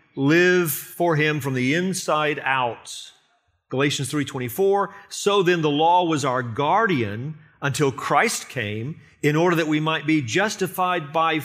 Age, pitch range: 40-59, 120-160 Hz